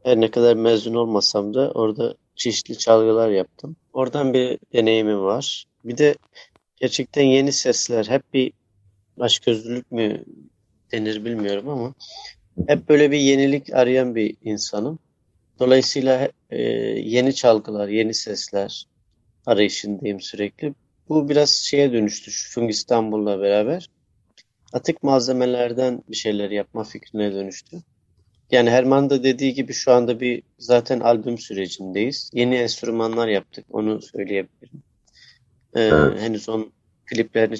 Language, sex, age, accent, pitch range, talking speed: Turkish, male, 40-59, native, 105-130 Hz, 120 wpm